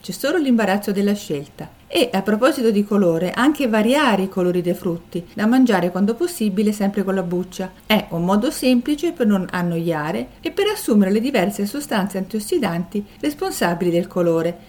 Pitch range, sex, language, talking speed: 180-250 Hz, female, Italian, 165 wpm